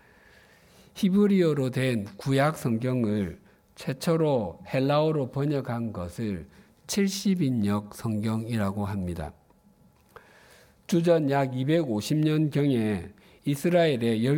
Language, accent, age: Korean, native, 50-69